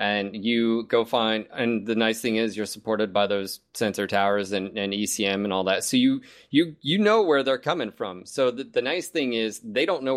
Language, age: English, 30-49